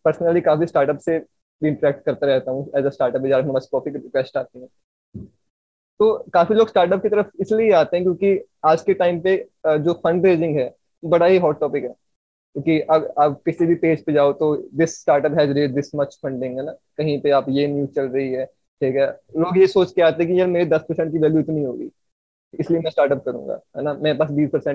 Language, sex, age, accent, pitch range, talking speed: Hindi, male, 20-39, native, 140-180 Hz, 200 wpm